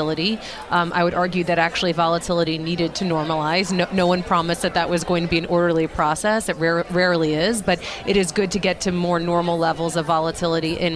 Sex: female